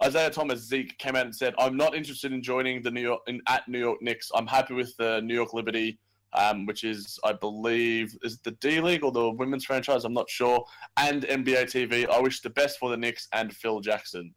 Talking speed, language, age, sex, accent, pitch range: 240 wpm, English, 20-39, male, Australian, 115-165 Hz